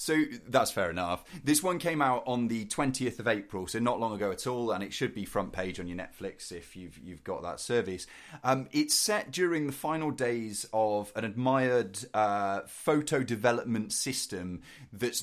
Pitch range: 105-135 Hz